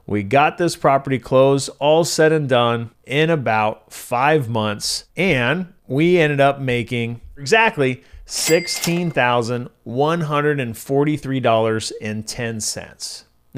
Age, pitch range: 30-49, 115-150 Hz